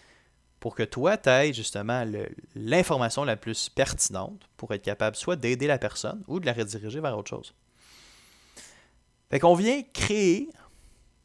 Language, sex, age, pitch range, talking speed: French, male, 30-49, 105-140 Hz, 155 wpm